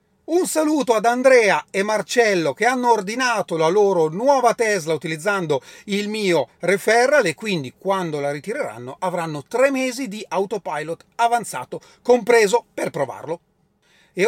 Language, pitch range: Italian, 180-235 Hz